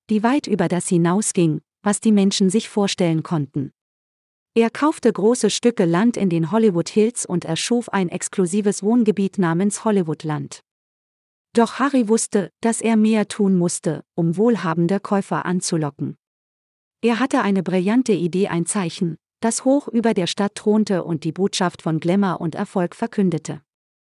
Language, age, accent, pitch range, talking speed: German, 40-59, German, 165-220 Hz, 150 wpm